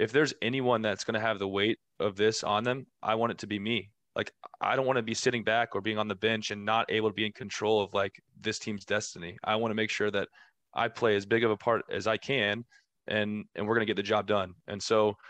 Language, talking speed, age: English, 265 wpm, 20-39